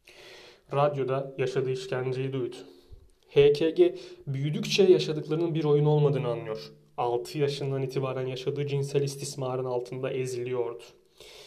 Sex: male